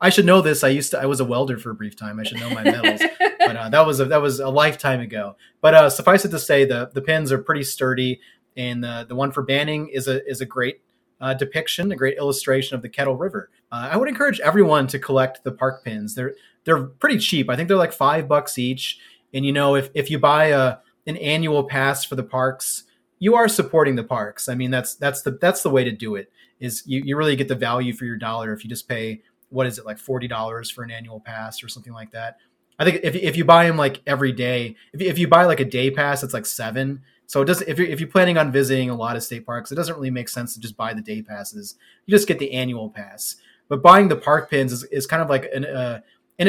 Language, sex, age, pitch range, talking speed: English, male, 30-49, 120-150 Hz, 265 wpm